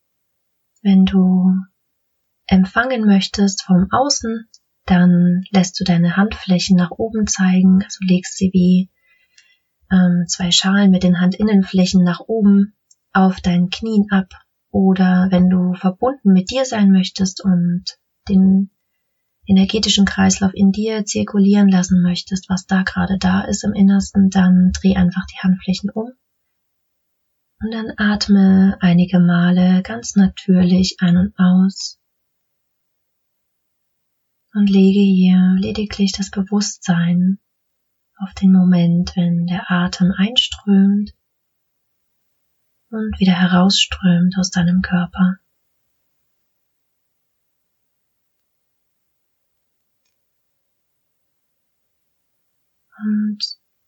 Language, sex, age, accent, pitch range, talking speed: German, female, 30-49, German, 185-200 Hz, 100 wpm